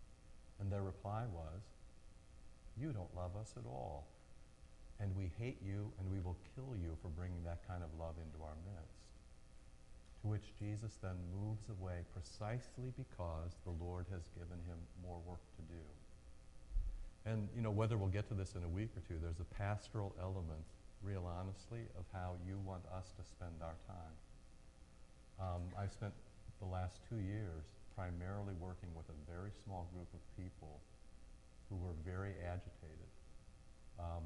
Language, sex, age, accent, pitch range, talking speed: English, male, 50-69, American, 85-100 Hz, 165 wpm